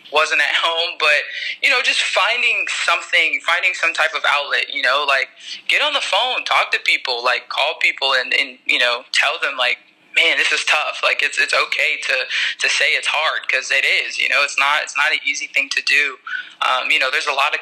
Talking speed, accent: 230 wpm, American